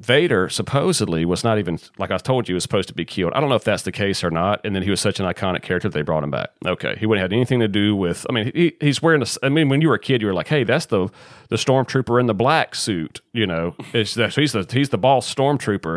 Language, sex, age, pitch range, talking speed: English, male, 40-59, 85-115 Hz, 290 wpm